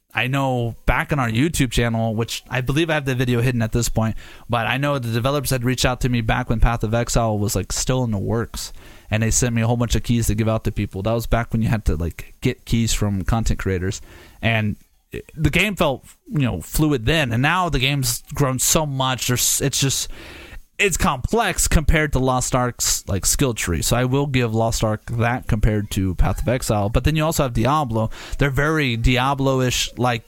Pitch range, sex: 115-140 Hz, male